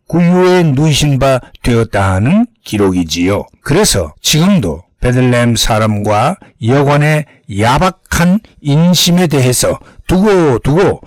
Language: Korean